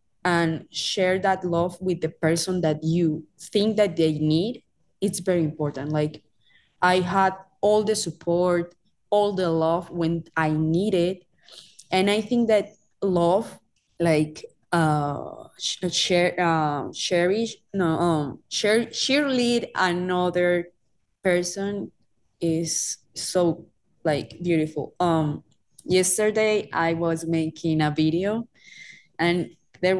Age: 20-39